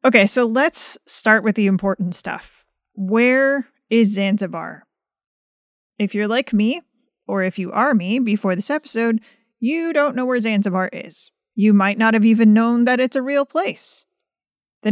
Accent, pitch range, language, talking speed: American, 200-255 Hz, English, 165 wpm